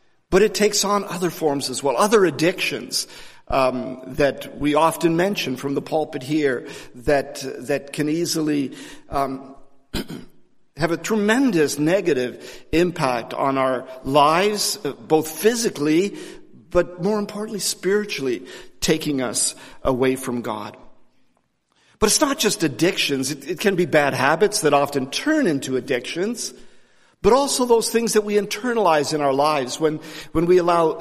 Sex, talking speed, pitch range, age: male, 140 wpm, 140-200 Hz, 50-69